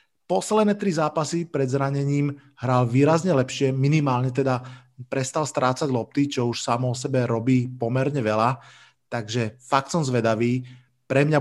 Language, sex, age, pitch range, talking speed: Slovak, male, 30-49, 125-145 Hz, 140 wpm